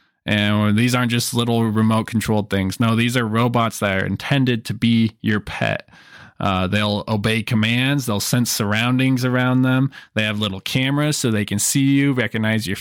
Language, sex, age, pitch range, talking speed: English, male, 20-39, 110-130 Hz, 185 wpm